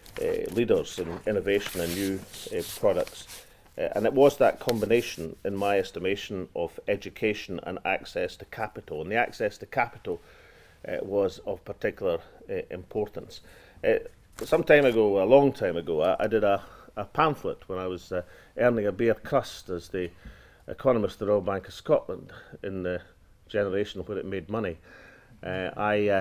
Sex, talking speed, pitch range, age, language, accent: male, 170 wpm, 95-130 Hz, 40-59, English, British